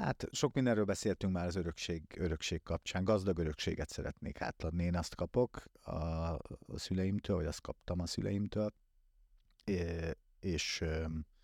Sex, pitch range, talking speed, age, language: male, 80-95 Hz, 125 wpm, 50-69, Hungarian